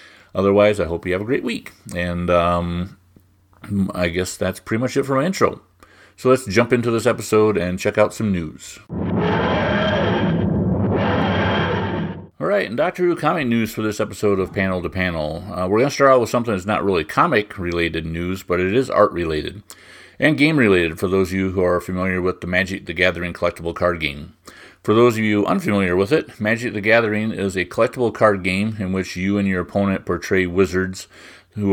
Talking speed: 195 wpm